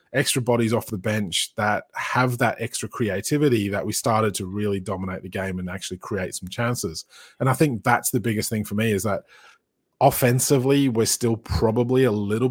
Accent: Australian